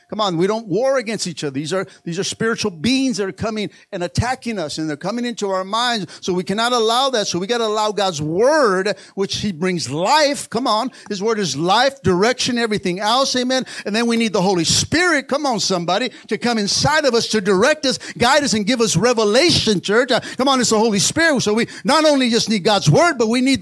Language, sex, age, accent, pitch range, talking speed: English, male, 50-69, American, 205-280 Hz, 240 wpm